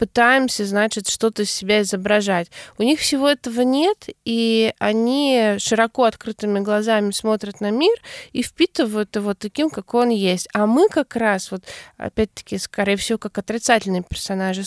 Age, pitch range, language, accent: 20-39, 205-240 Hz, Russian, native